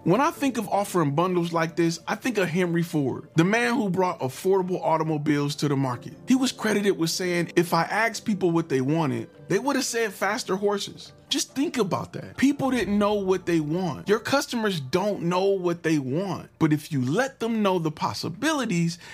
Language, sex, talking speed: English, male, 205 wpm